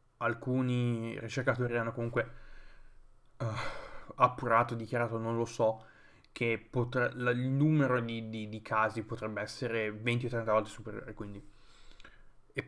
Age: 20-39